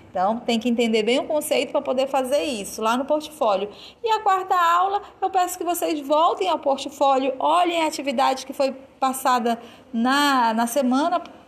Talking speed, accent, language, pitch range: 180 wpm, Brazilian, Portuguese, 220-280 Hz